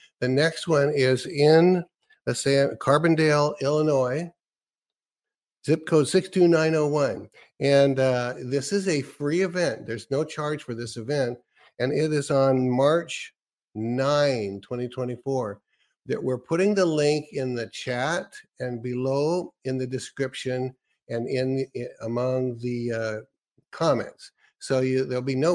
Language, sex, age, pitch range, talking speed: English, male, 50-69, 125-145 Hz, 135 wpm